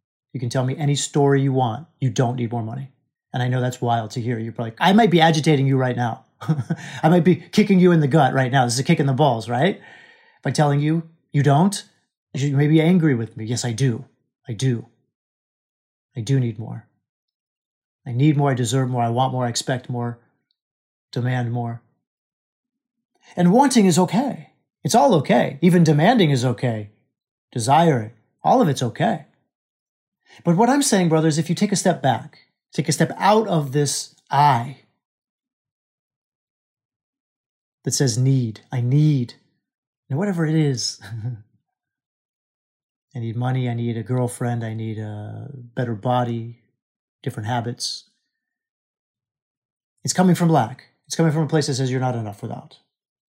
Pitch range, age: 120-165 Hz, 30-49